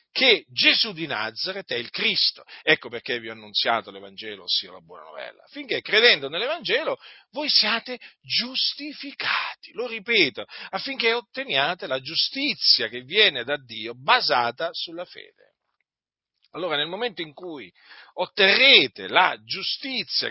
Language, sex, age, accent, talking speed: Italian, male, 40-59, native, 130 wpm